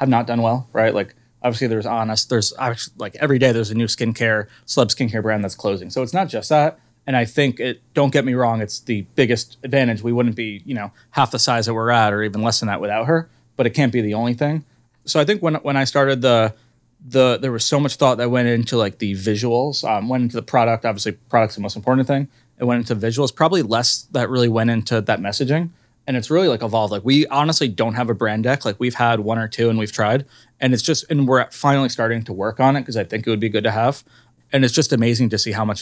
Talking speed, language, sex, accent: 265 wpm, English, male, American